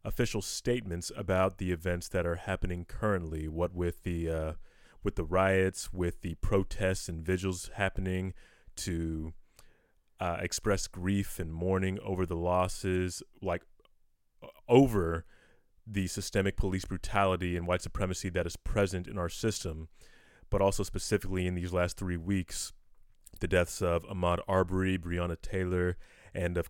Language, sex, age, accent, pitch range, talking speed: English, male, 30-49, American, 90-110 Hz, 140 wpm